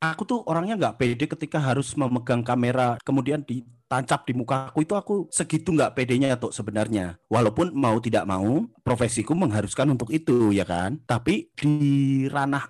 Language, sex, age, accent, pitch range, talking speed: Indonesian, male, 30-49, native, 120-175 Hz, 160 wpm